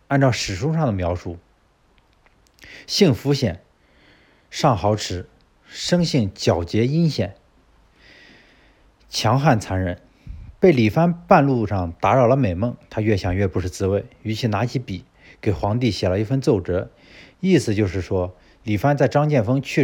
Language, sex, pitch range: Chinese, male, 95-135 Hz